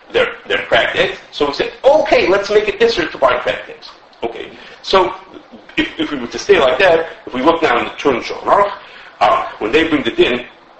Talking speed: 220 wpm